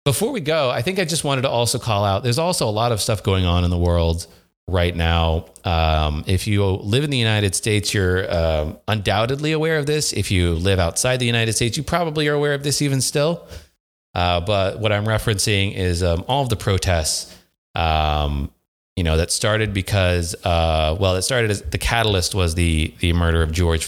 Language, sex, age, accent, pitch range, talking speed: English, male, 30-49, American, 85-115 Hz, 210 wpm